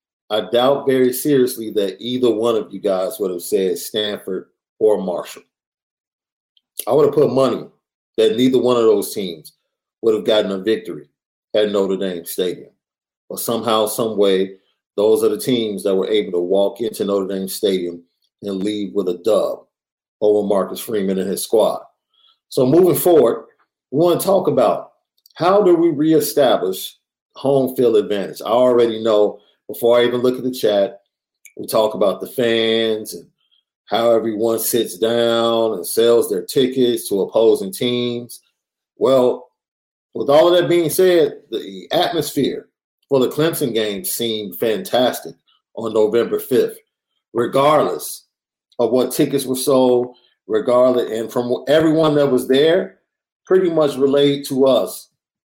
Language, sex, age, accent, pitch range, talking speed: English, male, 50-69, American, 110-160 Hz, 155 wpm